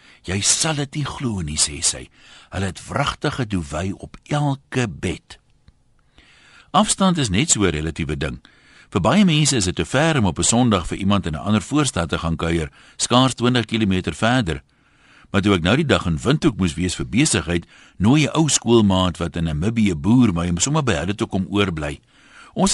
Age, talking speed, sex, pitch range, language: 60-79, 185 wpm, male, 85-140 Hz, Dutch